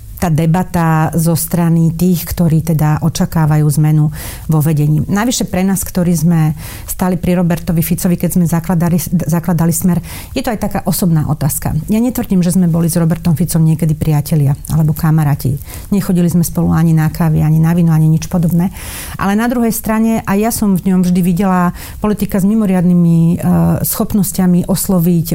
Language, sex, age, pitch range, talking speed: Slovak, female, 40-59, 165-195 Hz, 170 wpm